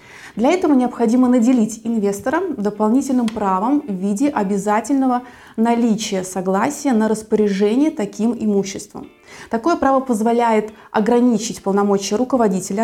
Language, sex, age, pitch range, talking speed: Russian, female, 20-39, 205-255 Hz, 105 wpm